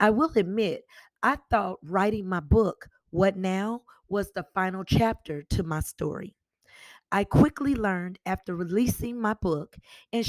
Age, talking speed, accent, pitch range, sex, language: 40-59, 145 wpm, American, 175-225 Hz, female, English